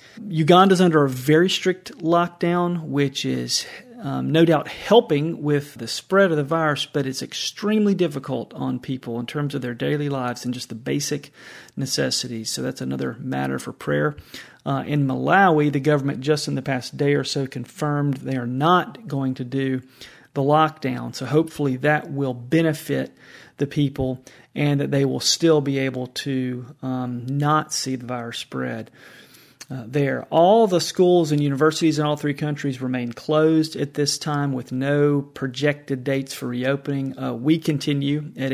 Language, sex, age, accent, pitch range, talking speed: English, male, 40-59, American, 130-155 Hz, 170 wpm